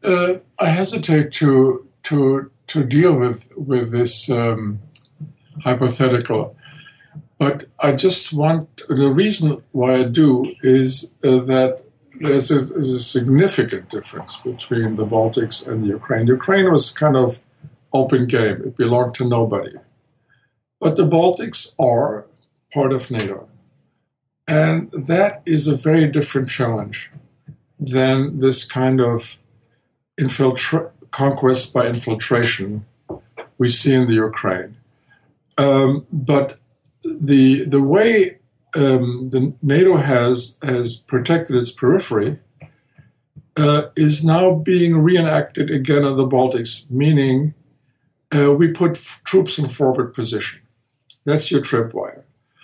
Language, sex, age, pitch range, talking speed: English, male, 50-69, 125-155 Hz, 120 wpm